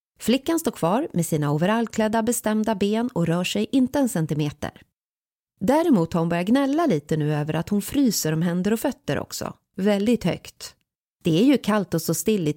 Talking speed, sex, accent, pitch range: 190 wpm, female, native, 155-225 Hz